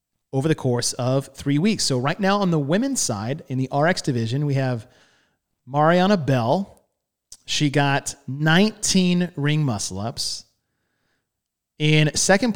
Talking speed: 135 wpm